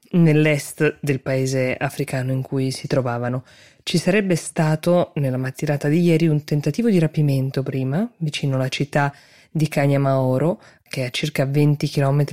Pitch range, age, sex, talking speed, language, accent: 140-165 Hz, 20-39, female, 150 wpm, Italian, native